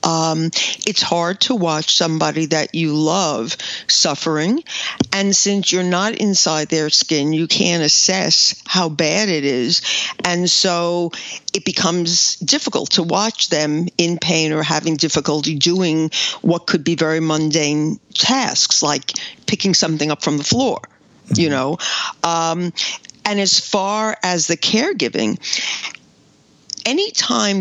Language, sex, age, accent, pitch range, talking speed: English, female, 50-69, American, 155-190 Hz, 135 wpm